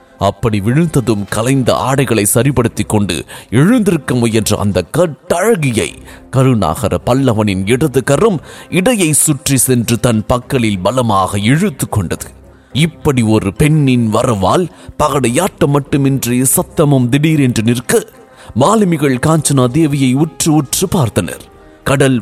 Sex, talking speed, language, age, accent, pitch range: male, 95 wpm, English, 30-49, Indian, 110-150 Hz